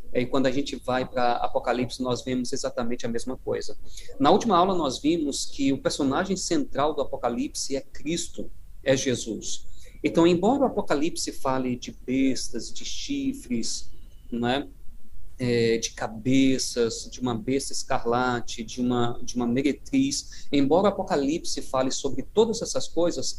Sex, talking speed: male, 150 wpm